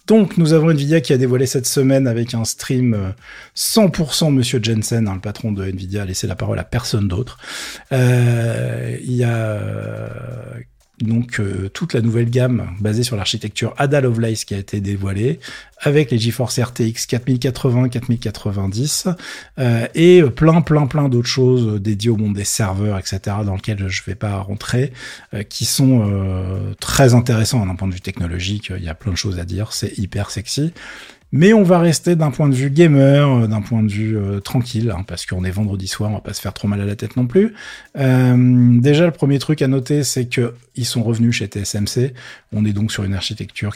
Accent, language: French, French